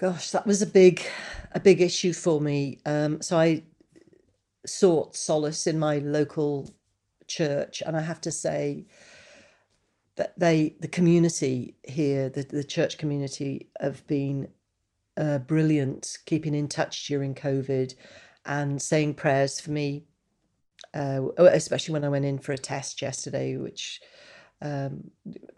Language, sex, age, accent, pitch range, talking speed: English, female, 40-59, British, 145-185 Hz, 140 wpm